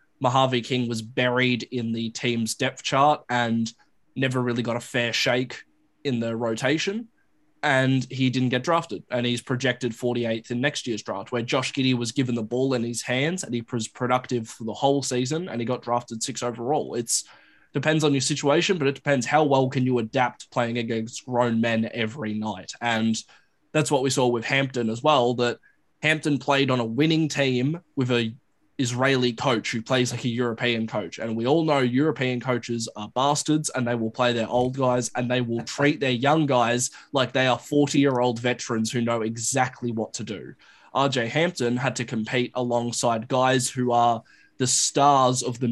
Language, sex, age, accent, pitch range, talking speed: English, male, 20-39, Australian, 120-135 Hz, 195 wpm